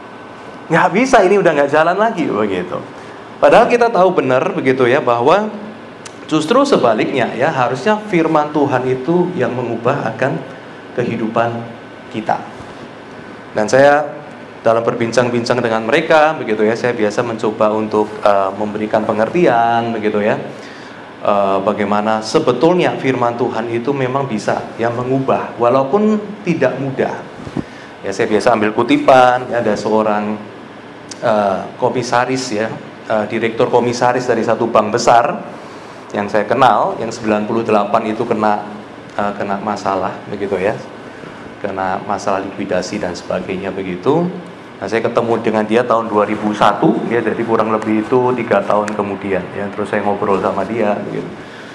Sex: male